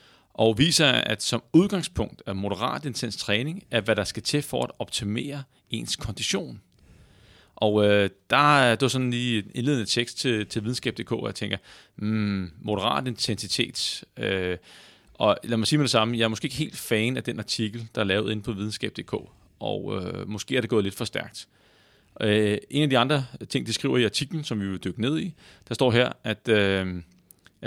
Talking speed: 195 wpm